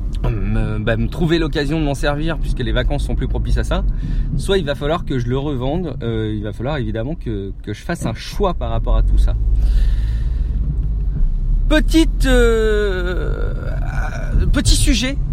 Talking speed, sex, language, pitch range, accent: 170 wpm, male, French, 125-195 Hz, French